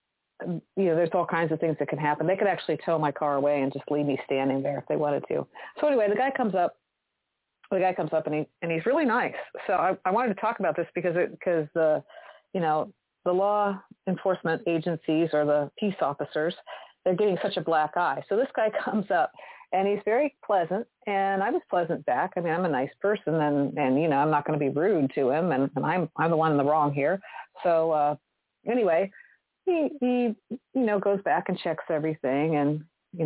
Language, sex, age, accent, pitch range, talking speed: English, female, 40-59, American, 150-195 Hz, 230 wpm